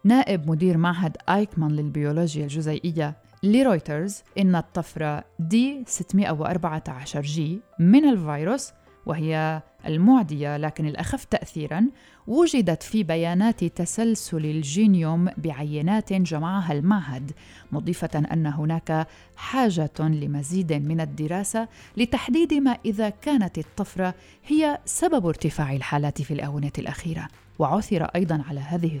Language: Arabic